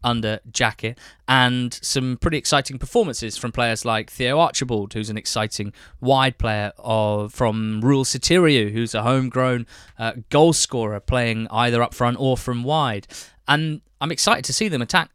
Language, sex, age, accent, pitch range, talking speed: English, male, 20-39, British, 110-135 Hz, 160 wpm